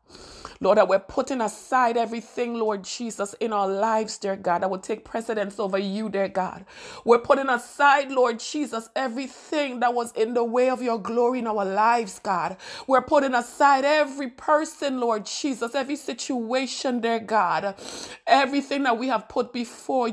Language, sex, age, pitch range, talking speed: English, female, 30-49, 225-275 Hz, 165 wpm